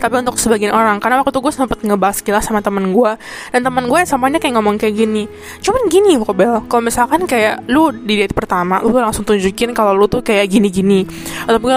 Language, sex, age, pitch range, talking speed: Indonesian, female, 10-29, 210-245 Hz, 205 wpm